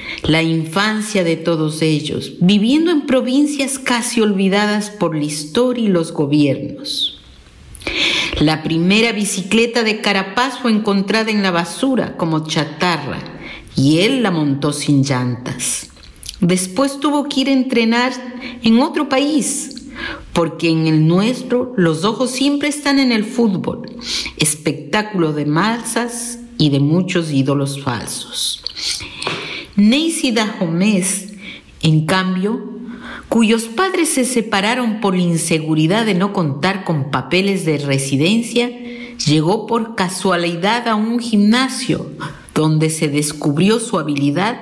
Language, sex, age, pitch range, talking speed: Spanish, female, 50-69, 155-235 Hz, 120 wpm